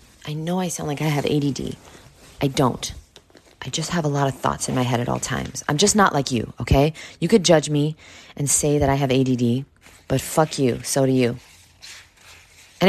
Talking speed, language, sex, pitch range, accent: 215 wpm, English, female, 120-165 Hz, American